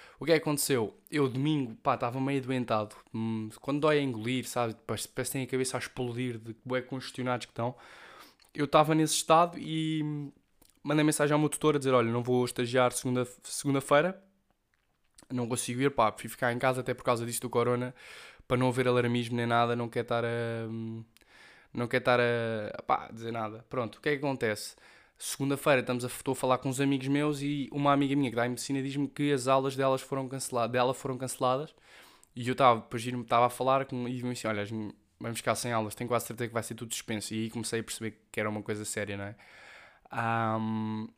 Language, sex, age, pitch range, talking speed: Portuguese, male, 10-29, 110-135 Hz, 215 wpm